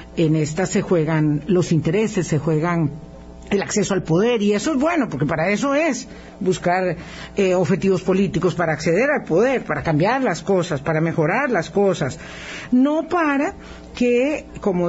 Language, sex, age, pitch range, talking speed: Spanish, female, 50-69, 165-245 Hz, 160 wpm